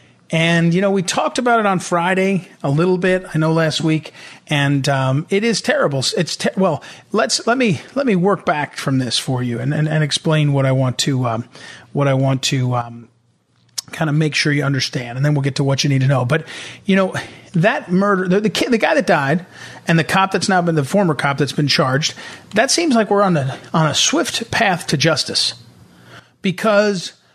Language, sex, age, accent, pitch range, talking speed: English, male, 40-59, American, 145-195 Hz, 225 wpm